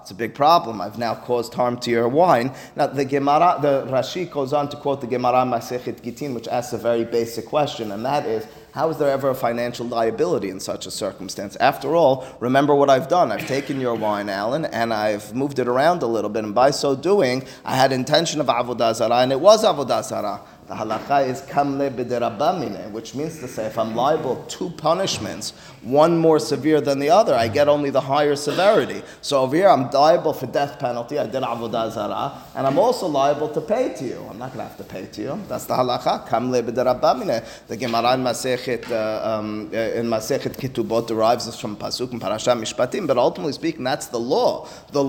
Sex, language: male, English